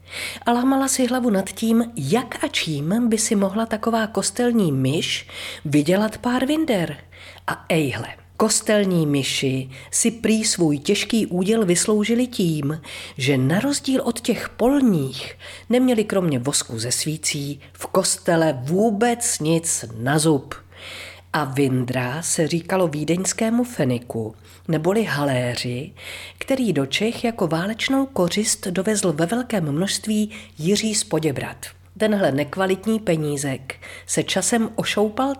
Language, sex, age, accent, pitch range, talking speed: Czech, female, 40-59, native, 145-225 Hz, 120 wpm